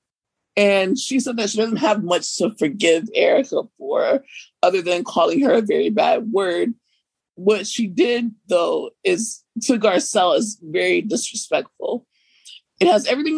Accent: American